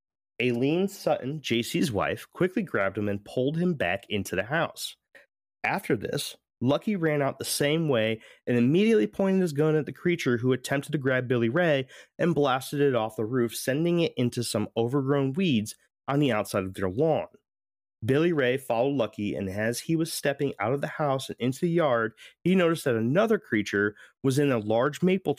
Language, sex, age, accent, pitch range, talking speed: English, male, 30-49, American, 110-155 Hz, 190 wpm